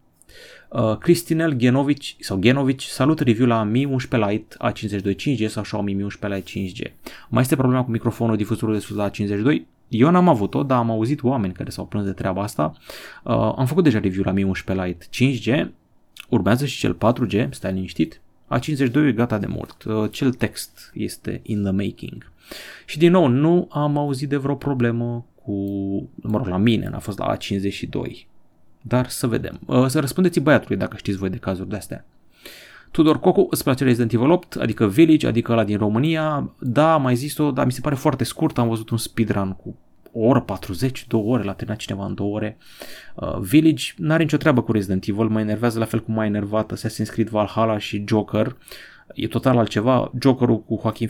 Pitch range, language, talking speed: 105-135 Hz, Romanian, 195 wpm